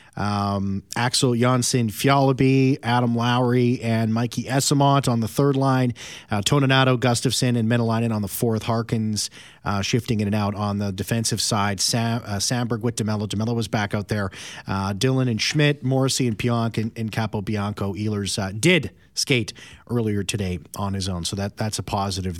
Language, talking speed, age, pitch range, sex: English, 175 wpm, 40-59, 105-125 Hz, male